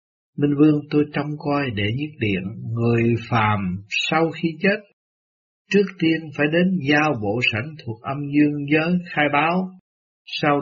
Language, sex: Vietnamese, male